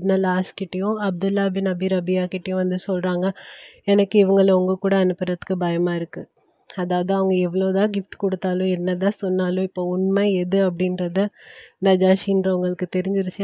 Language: Tamil